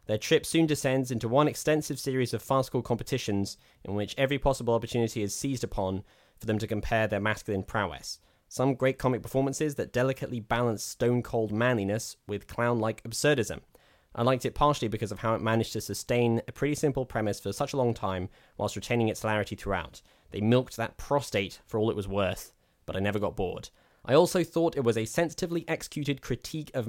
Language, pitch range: English, 110-135 Hz